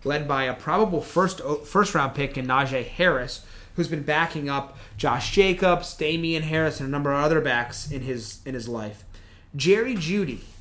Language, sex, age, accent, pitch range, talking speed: English, male, 30-49, American, 120-165 Hz, 180 wpm